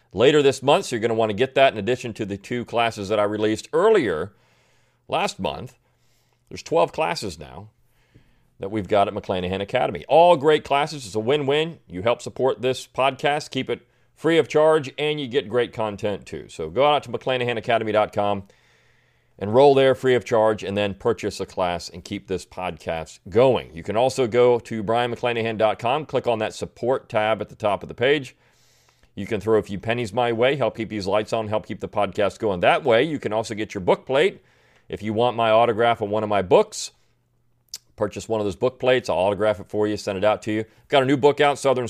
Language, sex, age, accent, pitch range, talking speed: English, male, 40-59, American, 105-130 Hz, 220 wpm